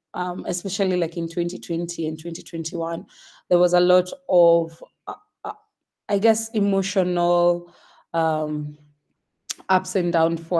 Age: 20-39